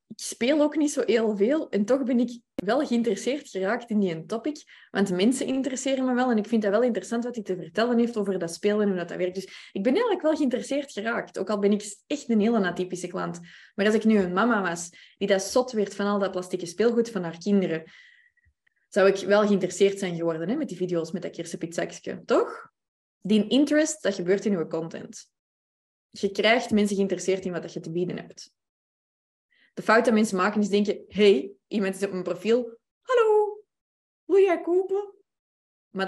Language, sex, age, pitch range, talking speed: Dutch, female, 20-39, 180-235 Hz, 210 wpm